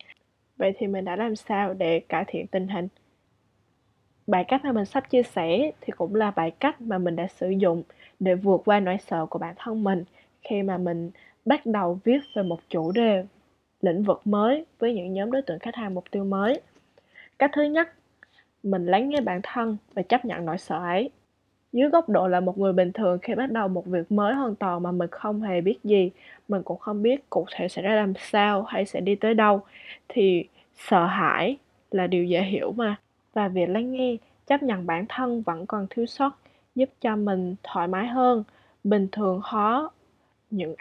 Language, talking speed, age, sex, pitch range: Vietnamese, 205 wpm, 10-29, female, 180-230 Hz